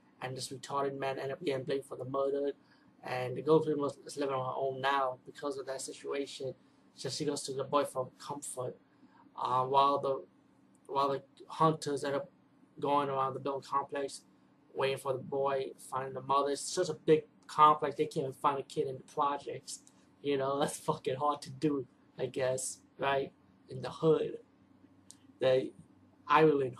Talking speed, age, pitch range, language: 185 wpm, 20-39, 135-150 Hz, English